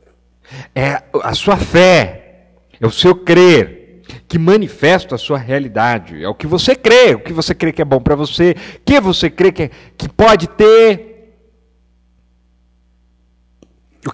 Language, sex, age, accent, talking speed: Portuguese, male, 50-69, Brazilian, 155 wpm